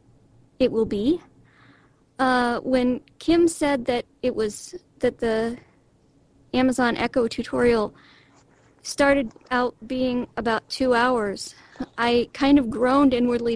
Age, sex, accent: 40-59, female, American